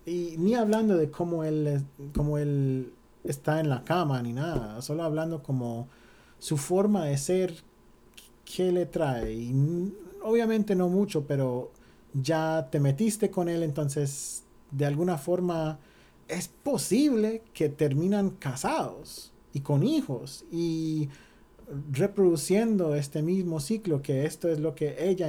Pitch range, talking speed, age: 140-180 Hz, 135 wpm, 40-59